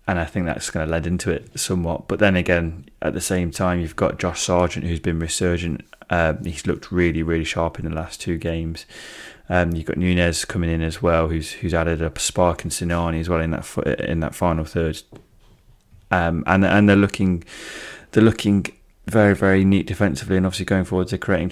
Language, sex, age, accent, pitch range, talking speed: English, male, 20-39, British, 80-95 Hz, 215 wpm